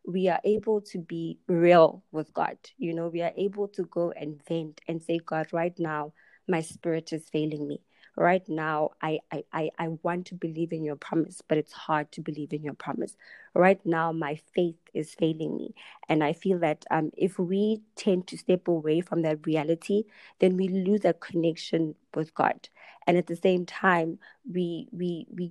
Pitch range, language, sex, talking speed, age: 165-195 Hz, English, female, 195 wpm, 20-39